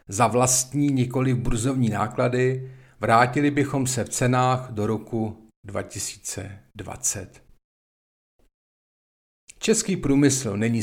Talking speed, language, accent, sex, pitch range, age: 95 wpm, Czech, native, male, 110-130 Hz, 50-69